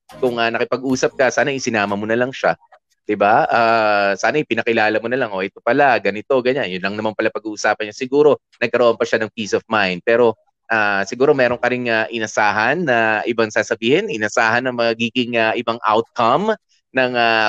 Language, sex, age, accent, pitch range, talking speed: Filipino, male, 20-39, native, 110-135 Hz, 190 wpm